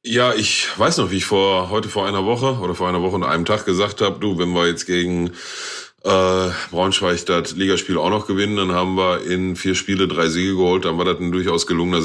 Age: 30-49